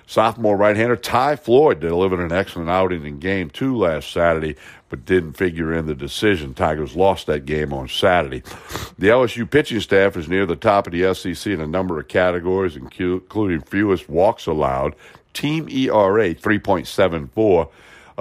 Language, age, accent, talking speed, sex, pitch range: English, 60-79, American, 160 wpm, male, 85-105 Hz